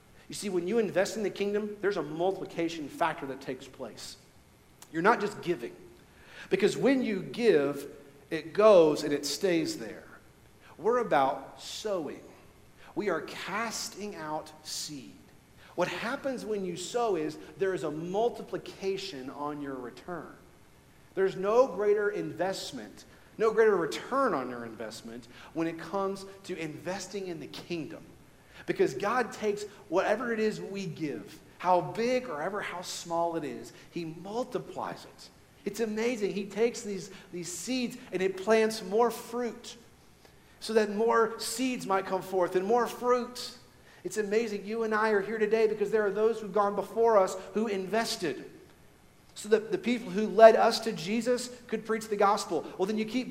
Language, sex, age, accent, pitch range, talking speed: English, male, 50-69, American, 175-225 Hz, 160 wpm